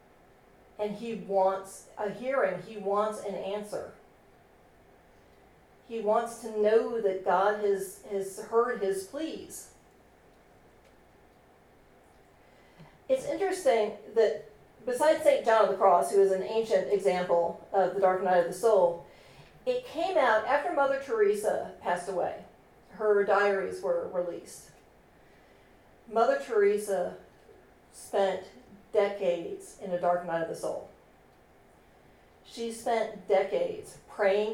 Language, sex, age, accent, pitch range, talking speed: English, female, 40-59, American, 190-240 Hz, 120 wpm